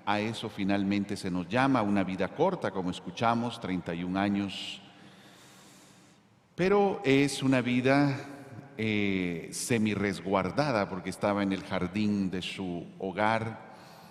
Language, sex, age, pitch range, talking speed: Spanish, male, 50-69, 95-125 Hz, 115 wpm